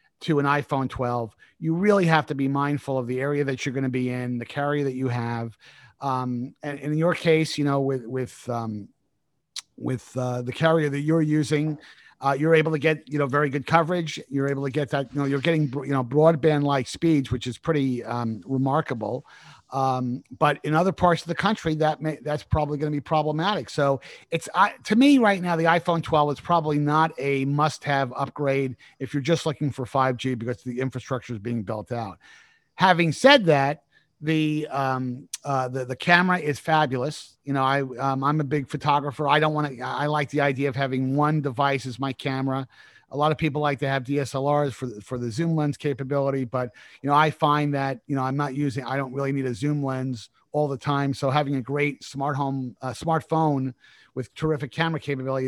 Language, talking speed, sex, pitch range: English, 210 wpm, male, 130-155 Hz